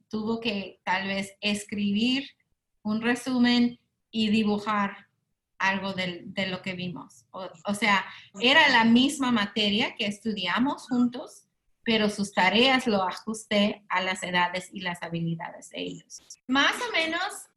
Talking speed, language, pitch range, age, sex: 140 wpm, Spanish, 205-250 Hz, 30-49, female